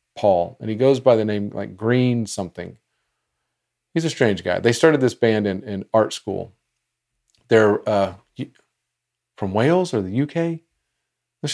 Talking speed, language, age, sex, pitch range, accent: 155 wpm, English, 40-59, male, 105-135 Hz, American